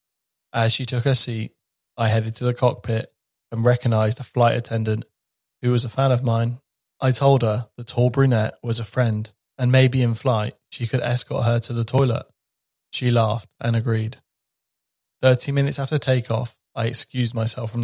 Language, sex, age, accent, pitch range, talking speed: English, male, 20-39, British, 110-125 Hz, 180 wpm